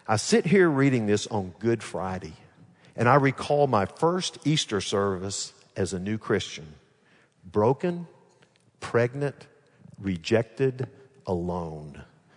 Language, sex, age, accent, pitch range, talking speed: English, male, 50-69, American, 95-135 Hz, 110 wpm